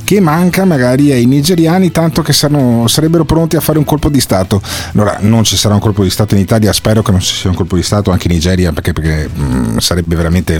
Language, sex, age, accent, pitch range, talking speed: Italian, male, 40-59, native, 90-140 Hz, 230 wpm